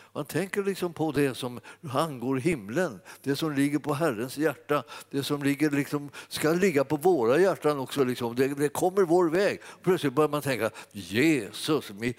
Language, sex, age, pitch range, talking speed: Swedish, male, 60-79, 125-165 Hz, 175 wpm